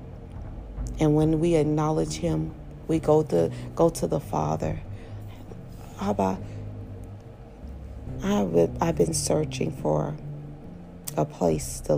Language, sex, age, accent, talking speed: English, female, 40-59, American, 105 wpm